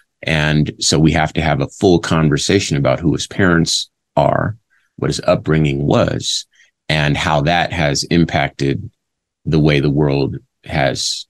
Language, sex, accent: English, male, American